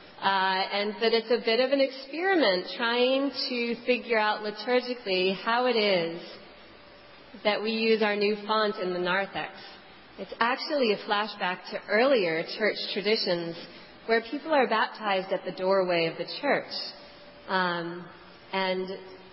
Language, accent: English, American